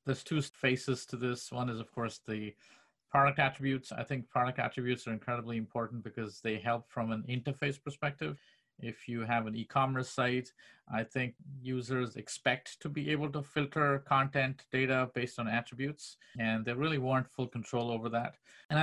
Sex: male